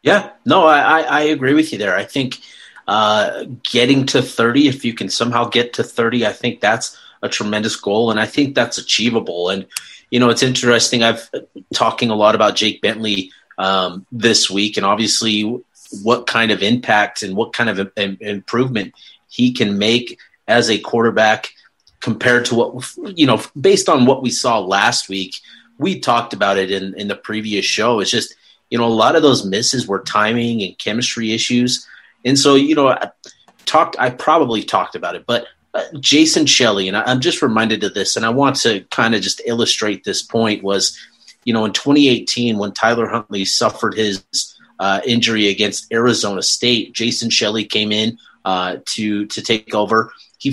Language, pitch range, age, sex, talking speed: English, 105-125 Hz, 30-49, male, 185 wpm